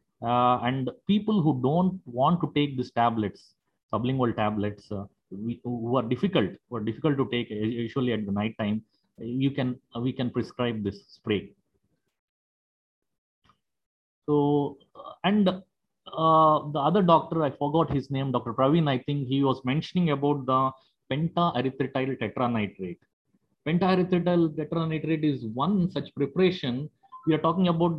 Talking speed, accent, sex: 140 wpm, Indian, male